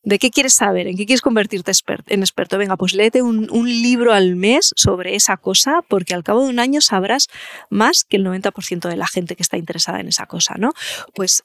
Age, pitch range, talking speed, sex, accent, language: 20-39, 185-240 Hz, 225 wpm, female, Spanish, Spanish